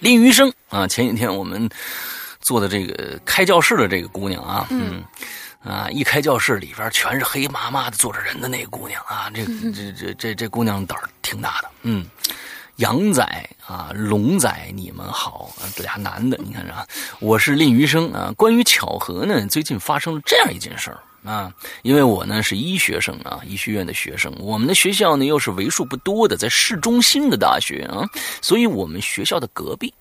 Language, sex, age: Chinese, male, 30-49